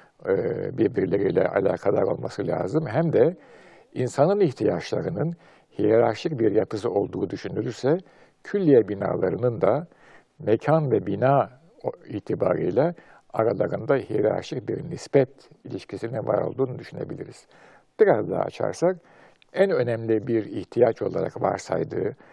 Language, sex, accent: Turkish, male, native